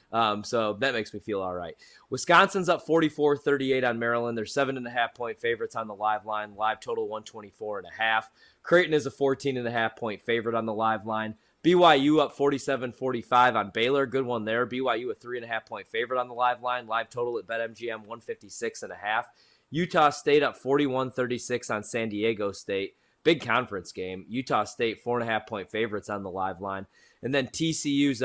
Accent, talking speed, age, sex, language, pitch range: American, 210 wpm, 20-39, male, English, 115-140 Hz